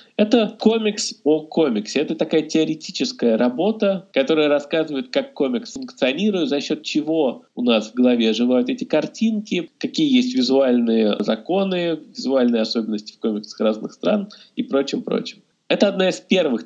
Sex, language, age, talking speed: male, Russian, 20-39, 140 wpm